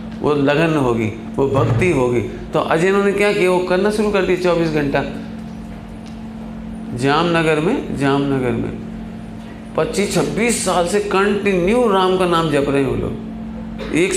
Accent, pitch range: native, 145-220 Hz